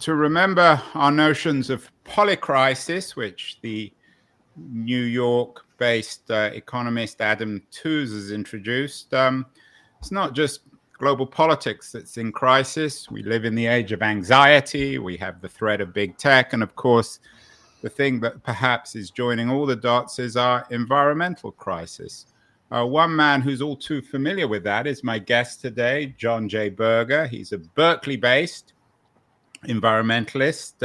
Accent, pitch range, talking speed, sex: British, 115-150 Hz, 145 wpm, male